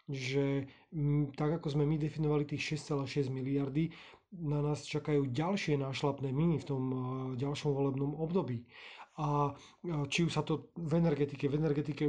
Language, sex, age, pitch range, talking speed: Slovak, male, 30-49, 135-155 Hz, 145 wpm